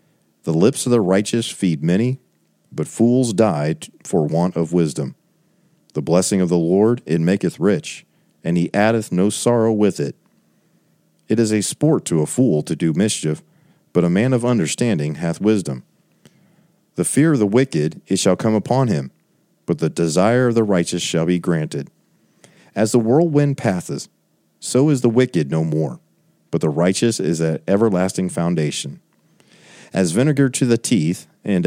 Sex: male